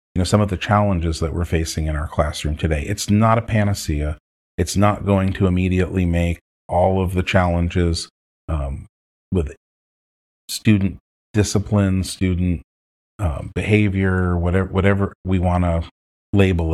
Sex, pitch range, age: male, 85-105 Hz, 40-59